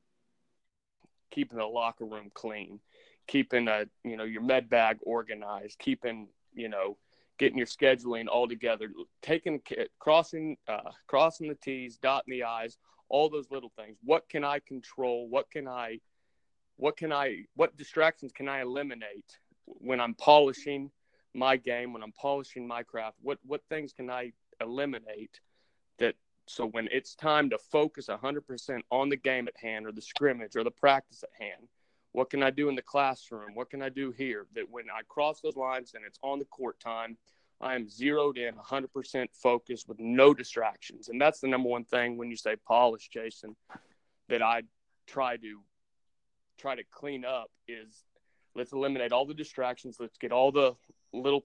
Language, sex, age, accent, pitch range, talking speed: English, male, 30-49, American, 120-140 Hz, 175 wpm